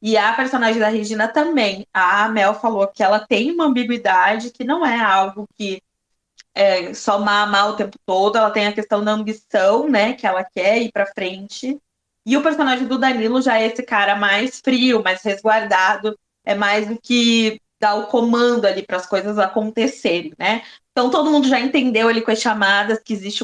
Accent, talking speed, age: Brazilian, 195 wpm, 20-39